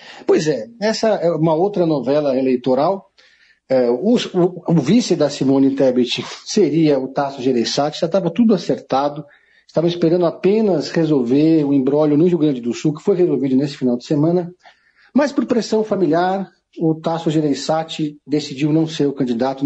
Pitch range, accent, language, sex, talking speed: 140-175 Hz, Brazilian, Portuguese, male, 160 wpm